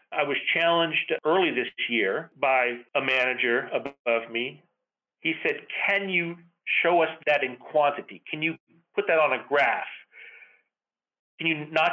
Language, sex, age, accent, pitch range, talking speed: English, male, 40-59, American, 125-160 Hz, 150 wpm